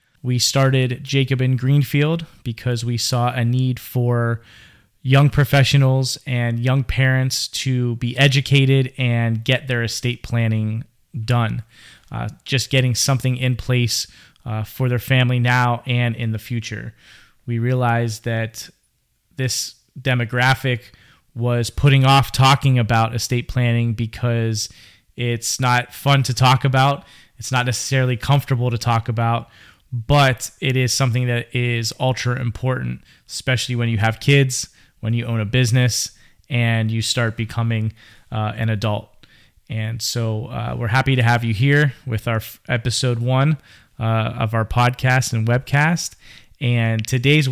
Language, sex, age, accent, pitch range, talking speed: English, male, 20-39, American, 115-130 Hz, 140 wpm